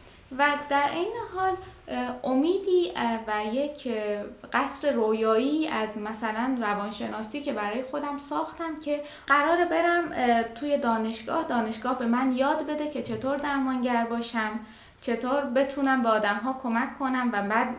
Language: Persian